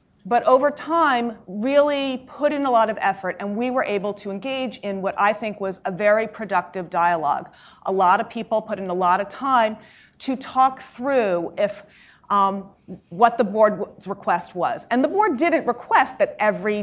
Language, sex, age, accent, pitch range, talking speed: English, female, 30-49, American, 195-235 Hz, 185 wpm